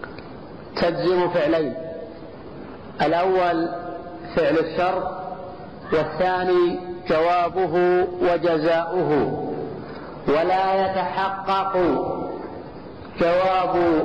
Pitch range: 170-190 Hz